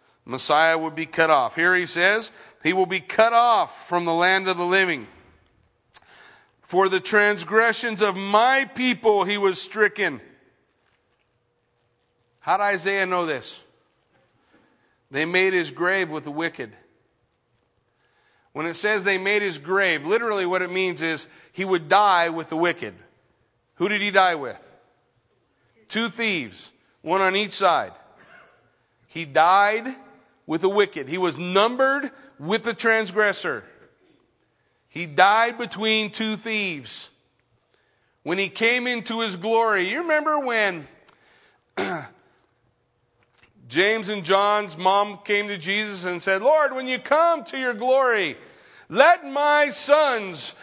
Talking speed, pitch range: 135 wpm, 170-225 Hz